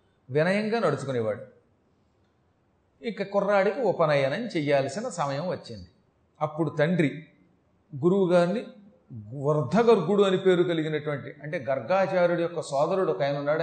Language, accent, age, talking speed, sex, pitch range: Telugu, native, 40-59, 100 wpm, male, 140-195 Hz